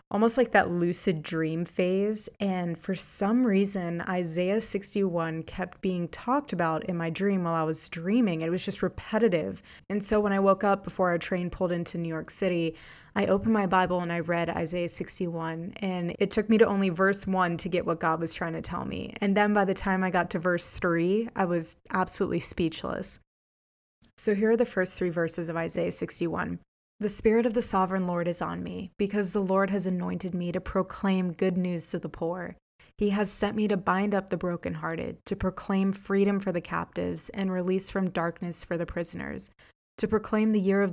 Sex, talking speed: female, 205 wpm